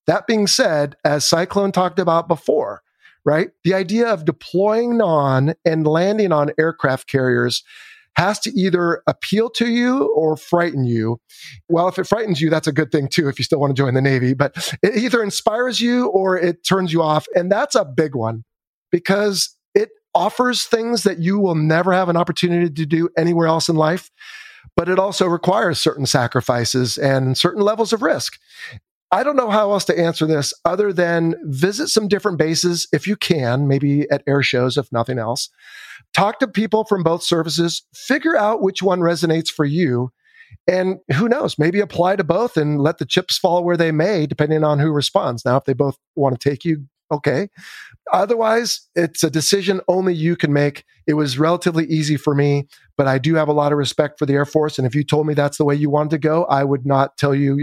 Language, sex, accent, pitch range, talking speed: English, male, American, 145-190 Hz, 205 wpm